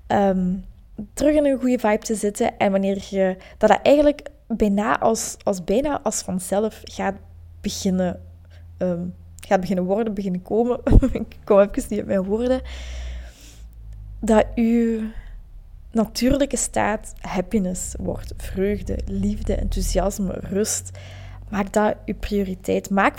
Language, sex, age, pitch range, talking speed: Dutch, female, 20-39, 190-250 Hz, 130 wpm